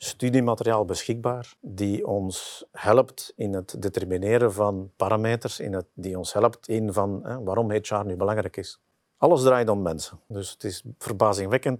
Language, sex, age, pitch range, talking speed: Dutch, male, 50-69, 100-120 Hz, 160 wpm